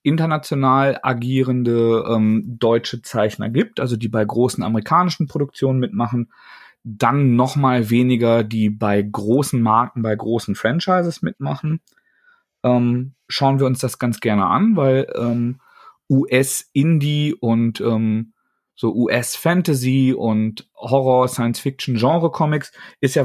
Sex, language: male, German